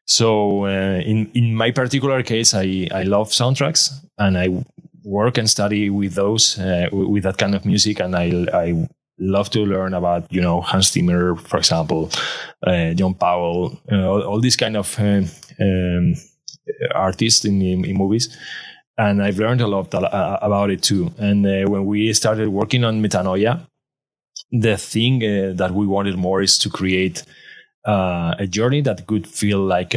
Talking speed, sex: 180 wpm, male